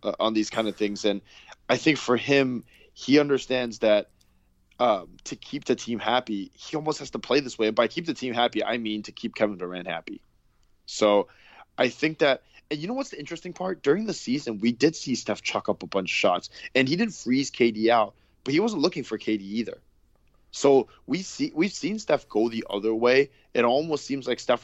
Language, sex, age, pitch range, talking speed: English, male, 20-39, 105-140 Hz, 230 wpm